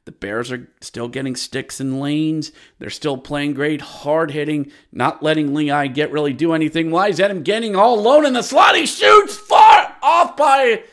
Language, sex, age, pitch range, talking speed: English, male, 40-59, 160-260 Hz, 205 wpm